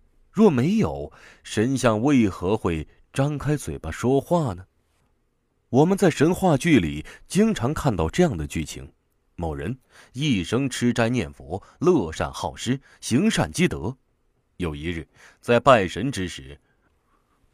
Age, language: 30-49, Chinese